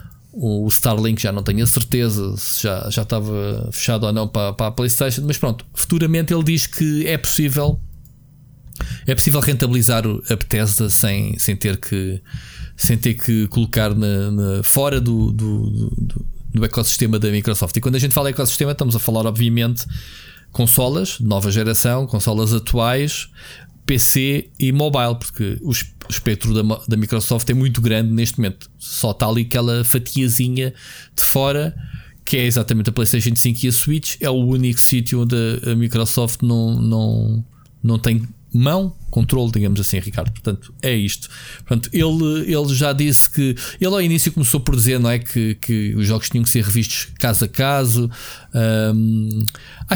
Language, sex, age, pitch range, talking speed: Portuguese, male, 20-39, 110-140 Hz, 165 wpm